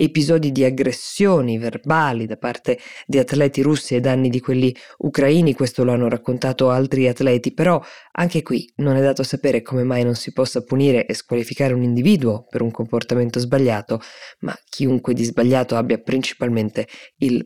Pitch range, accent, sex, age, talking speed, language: 120-145 Hz, native, female, 20-39, 165 wpm, Italian